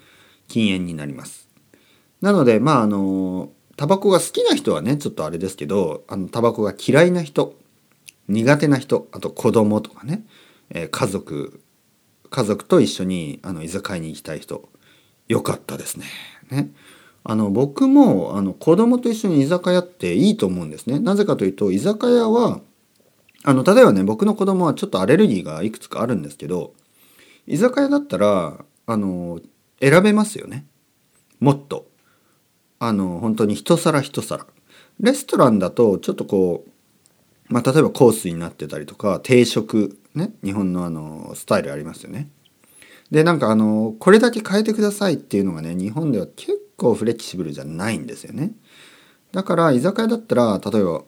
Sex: male